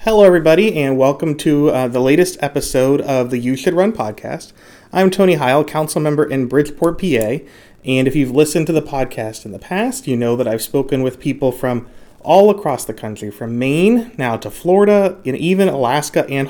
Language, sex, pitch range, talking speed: English, male, 125-160 Hz, 195 wpm